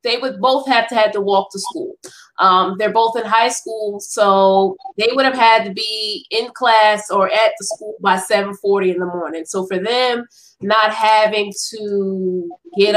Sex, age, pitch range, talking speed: female, 20-39, 195-240 Hz, 190 wpm